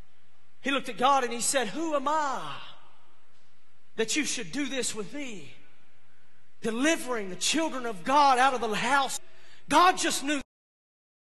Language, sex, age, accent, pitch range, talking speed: English, male, 40-59, American, 255-320 Hz, 150 wpm